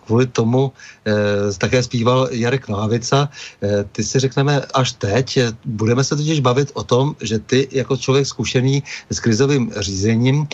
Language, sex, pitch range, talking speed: Czech, male, 110-135 Hz, 160 wpm